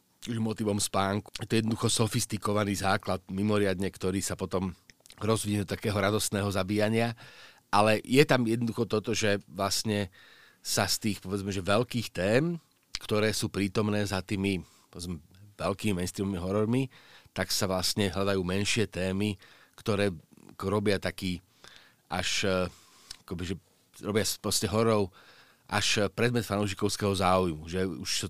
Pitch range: 95-105 Hz